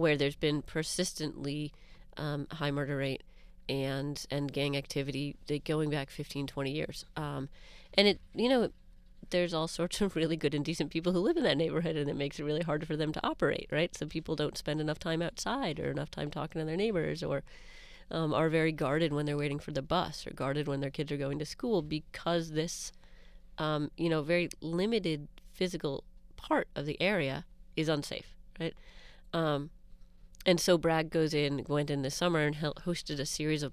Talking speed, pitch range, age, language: 195 wpm, 140-160 Hz, 30-49, English